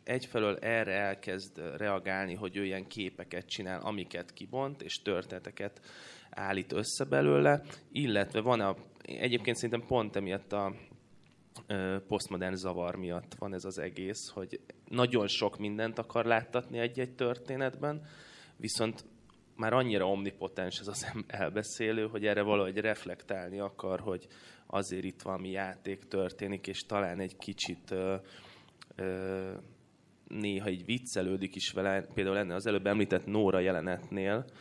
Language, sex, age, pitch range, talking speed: Hungarian, male, 20-39, 95-110 Hz, 130 wpm